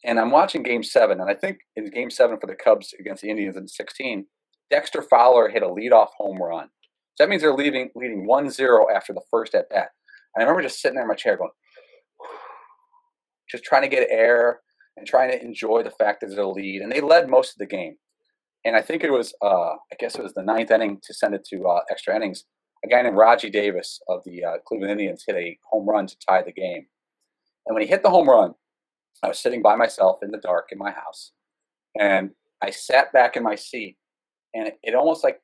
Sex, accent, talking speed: male, American, 235 wpm